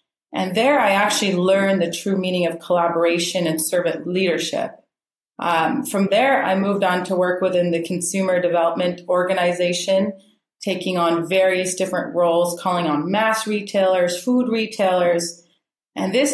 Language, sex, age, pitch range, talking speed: English, female, 30-49, 175-205 Hz, 145 wpm